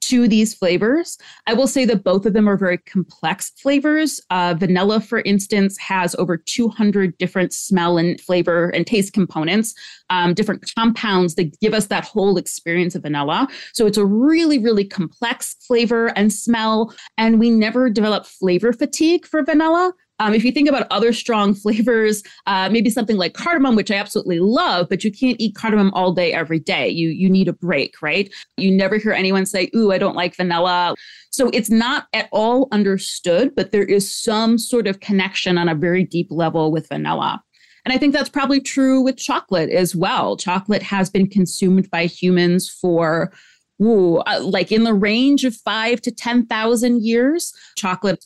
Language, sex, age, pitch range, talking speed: English, female, 30-49, 180-235 Hz, 185 wpm